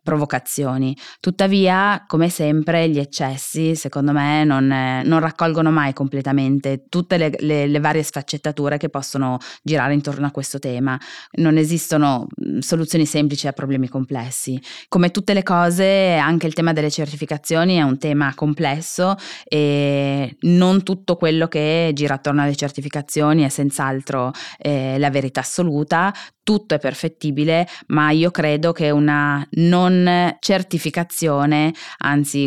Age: 20-39